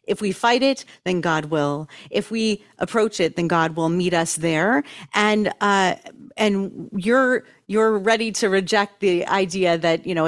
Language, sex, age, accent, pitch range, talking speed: English, female, 40-59, American, 180-260 Hz, 175 wpm